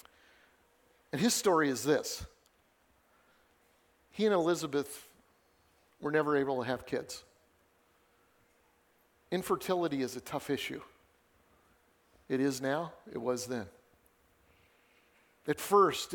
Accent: American